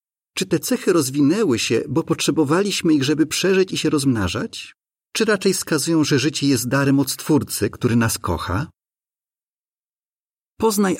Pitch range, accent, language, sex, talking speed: 125-175 Hz, native, Polish, male, 140 wpm